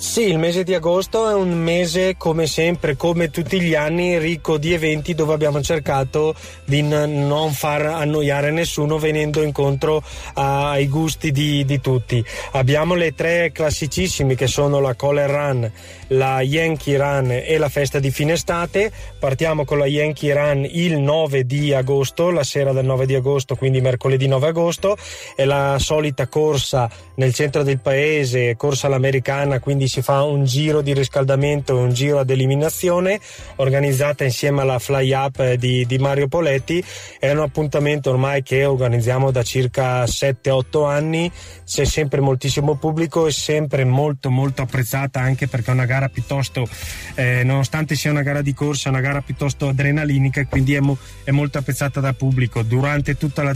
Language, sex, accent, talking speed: Italian, male, native, 170 wpm